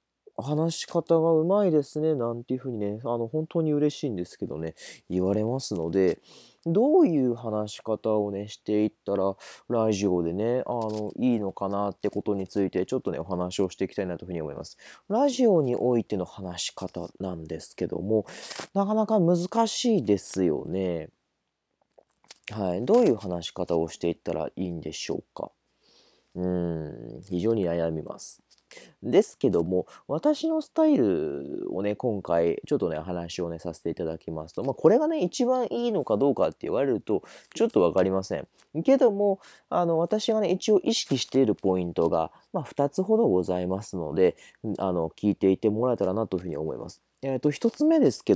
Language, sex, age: Japanese, male, 20-39